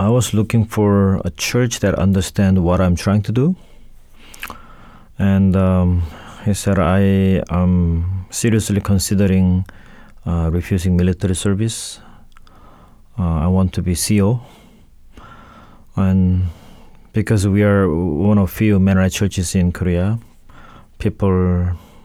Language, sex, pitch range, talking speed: English, male, 90-110 Hz, 115 wpm